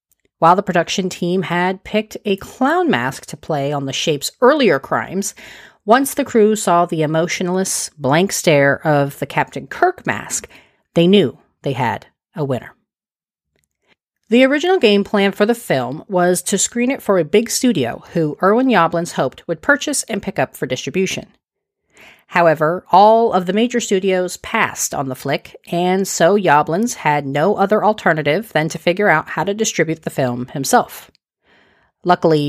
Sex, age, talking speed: female, 40-59, 165 wpm